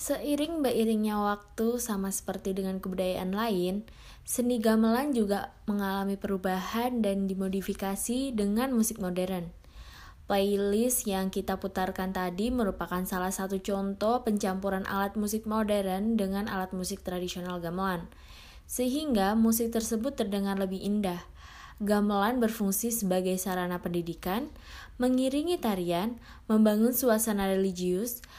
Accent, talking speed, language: native, 110 wpm, Indonesian